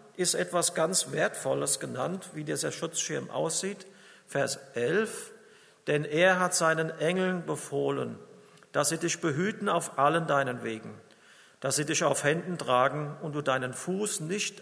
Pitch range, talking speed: 140-180 Hz, 150 wpm